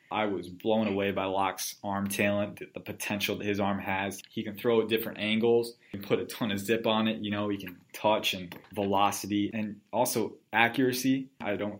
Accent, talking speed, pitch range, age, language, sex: American, 210 wpm, 100-115 Hz, 20-39, English, male